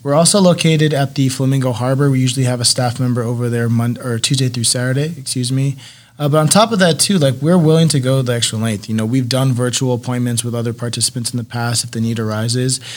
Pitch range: 115-135 Hz